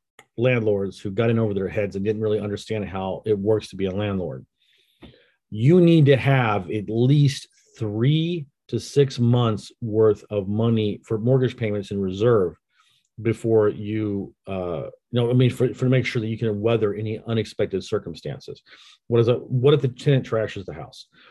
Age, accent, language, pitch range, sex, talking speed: 40-59, American, English, 100-125 Hz, male, 185 wpm